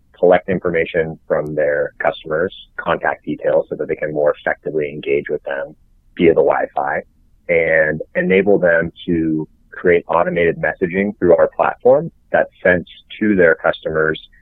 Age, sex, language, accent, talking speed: 30-49, male, English, American, 140 wpm